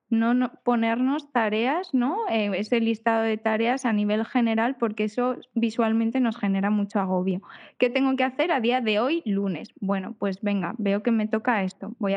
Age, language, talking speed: 10-29, Spanish, 185 wpm